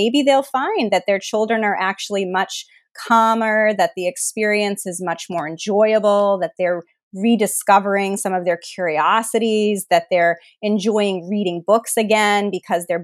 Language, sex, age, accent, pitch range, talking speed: English, female, 30-49, American, 175-225 Hz, 145 wpm